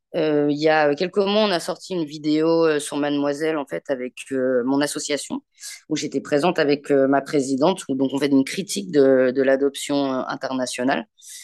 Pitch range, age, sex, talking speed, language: 145-170 Hz, 20-39, female, 190 wpm, French